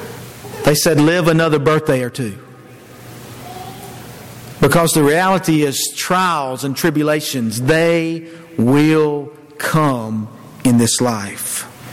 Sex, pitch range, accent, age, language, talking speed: male, 135-210 Hz, American, 50-69, English, 100 wpm